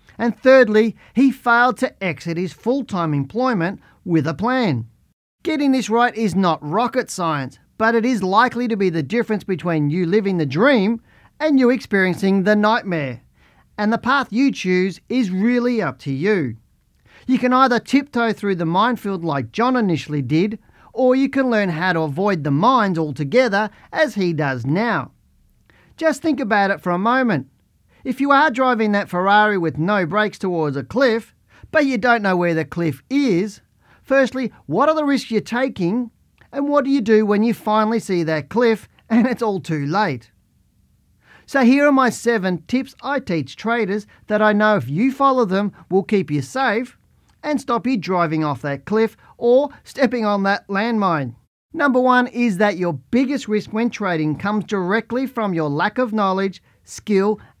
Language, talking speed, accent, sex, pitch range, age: English, 180 wpm, Australian, male, 175-245 Hz, 40-59